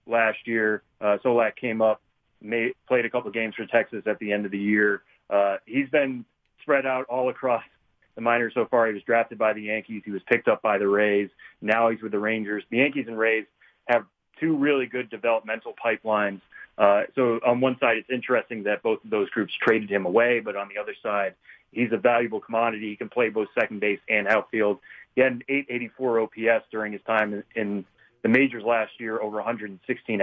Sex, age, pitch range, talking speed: male, 30-49, 105-125 Hz, 210 wpm